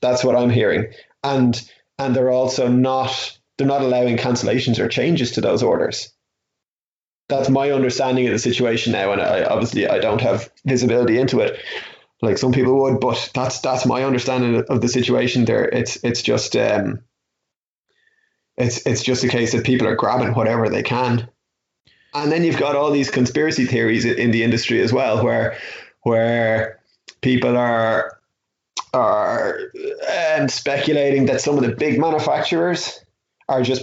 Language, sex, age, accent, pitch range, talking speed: English, male, 20-39, Irish, 120-140 Hz, 160 wpm